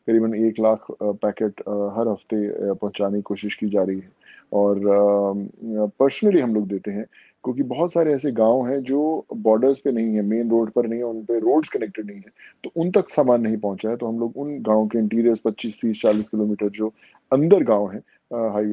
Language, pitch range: Marathi, 105-125 Hz